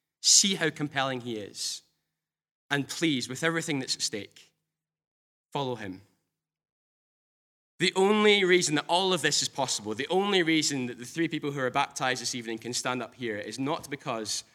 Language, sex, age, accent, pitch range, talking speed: English, male, 10-29, British, 115-145 Hz, 175 wpm